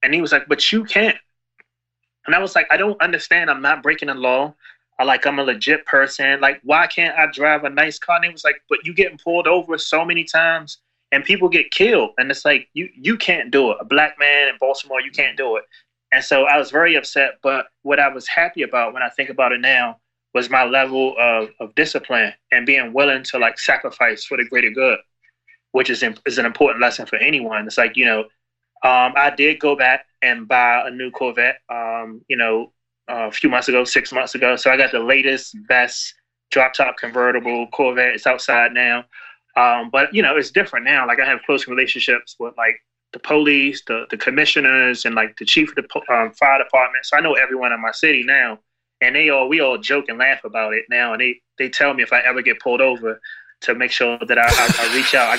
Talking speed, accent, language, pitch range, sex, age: 235 wpm, American, English, 120-160 Hz, male, 20-39